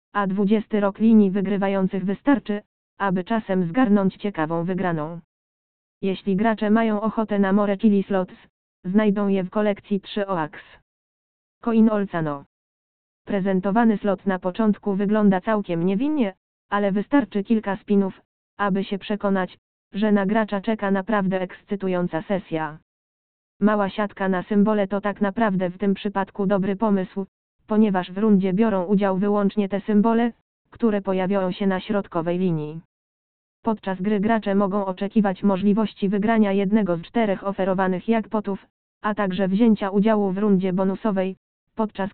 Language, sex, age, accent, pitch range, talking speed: Polish, female, 20-39, native, 190-210 Hz, 130 wpm